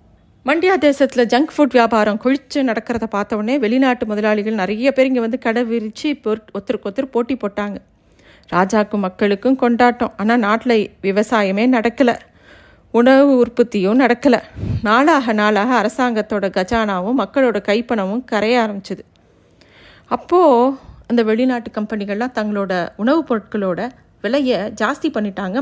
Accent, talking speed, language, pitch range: native, 110 wpm, Tamil, 205-260 Hz